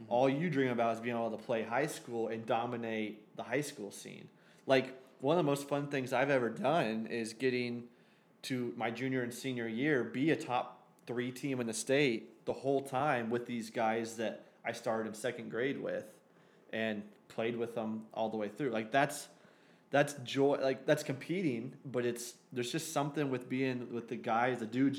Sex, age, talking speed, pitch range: male, 20-39, 200 wpm, 115-135 Hz